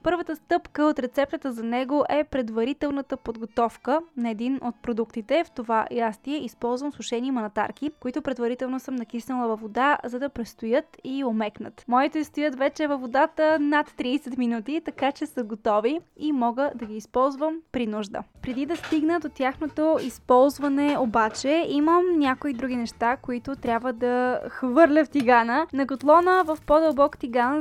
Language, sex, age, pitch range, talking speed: Bulgarian, female, 10-29, 230-295 Hz, 155 wpm